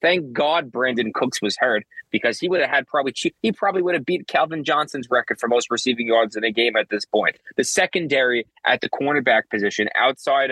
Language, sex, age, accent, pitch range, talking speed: English, male, 20-39, American, 115-145 Hz, 210 wpm